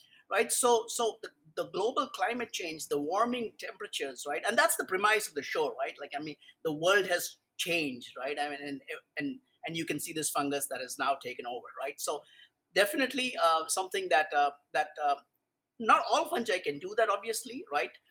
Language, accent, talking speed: English, Indian, 200 wpm